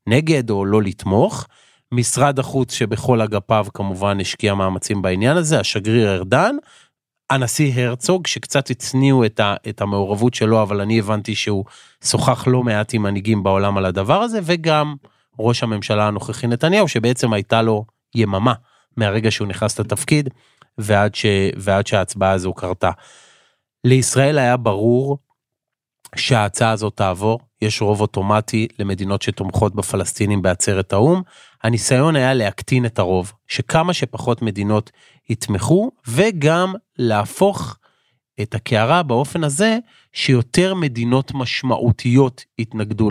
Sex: male